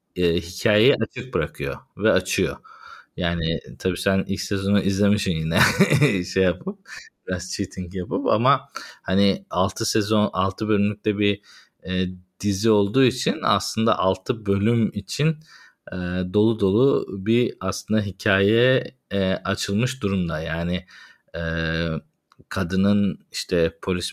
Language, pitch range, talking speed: Turkish, 85-100 Hz, 115 wpm